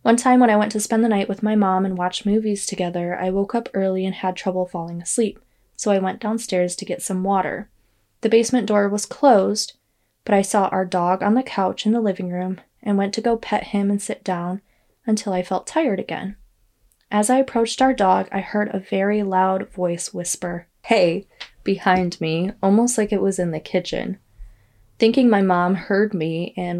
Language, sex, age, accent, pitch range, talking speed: English, female, 20-39, American, 175-205 Hz, 205 wpm